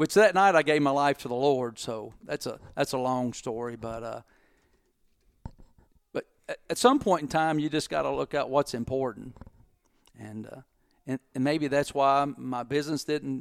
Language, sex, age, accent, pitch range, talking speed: English, male, 50-69, American, 125-150 Hz, 190 wpm